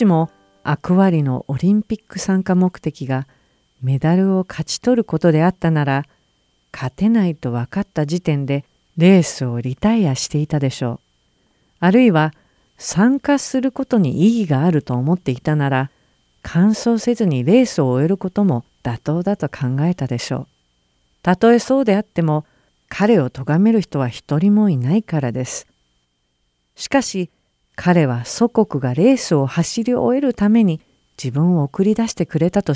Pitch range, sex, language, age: 130-195 Hz, female, Japanese, 50-69